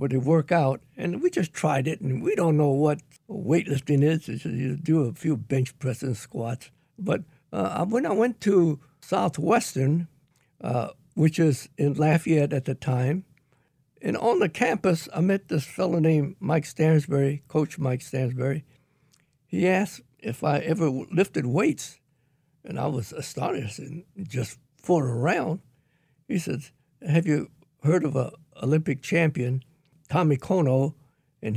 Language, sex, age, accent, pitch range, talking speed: English, male, 60-79, American, 140-170 Hz, 150 wpm